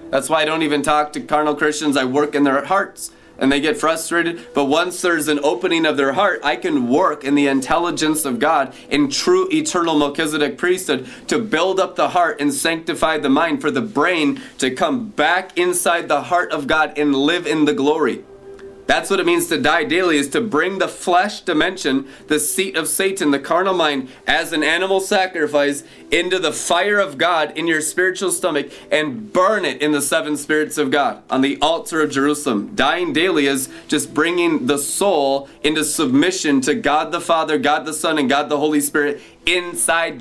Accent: American